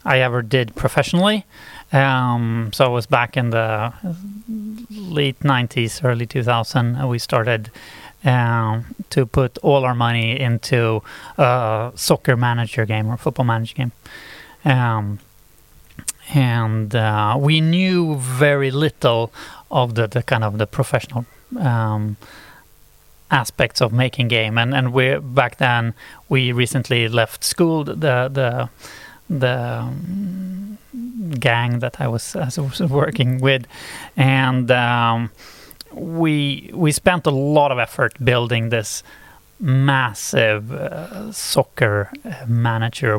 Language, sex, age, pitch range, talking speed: English, male, 30-49, 115-145 Hz, 120 wpm